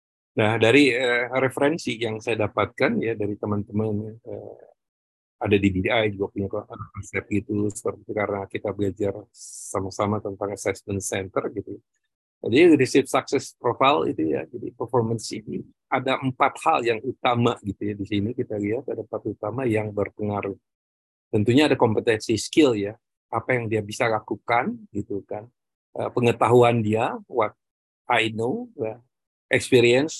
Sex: male